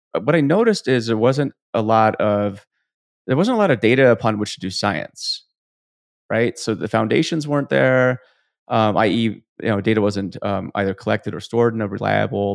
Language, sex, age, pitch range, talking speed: English, male, 30-49, 100-115 Hz, 190 wpm